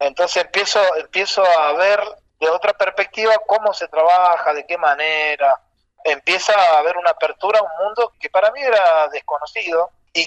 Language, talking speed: Spanish, 165 wpm